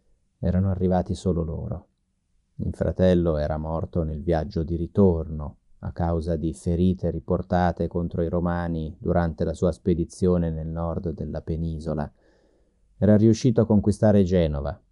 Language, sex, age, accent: Italian, male, 30-49, native